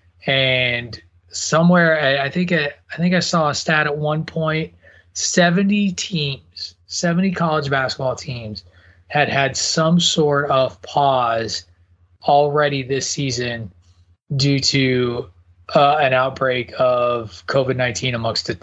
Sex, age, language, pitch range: male, 20-39, English, 120-150 Hz